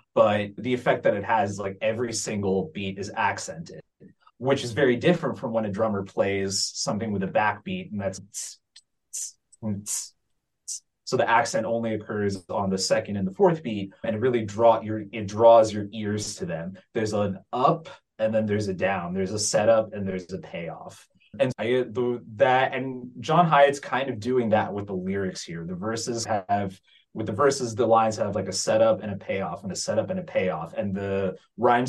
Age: 20-39